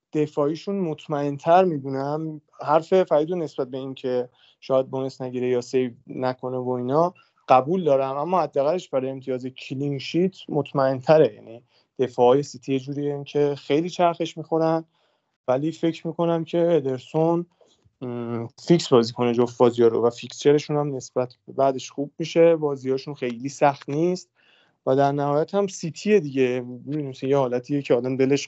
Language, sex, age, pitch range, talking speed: Persian, male, 30-49, 130-175 Hz, 155 wpm